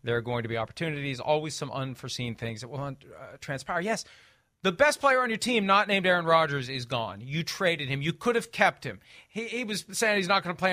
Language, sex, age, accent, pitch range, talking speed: English, male, 40-59, American, 150-225 Hz, 245 wpm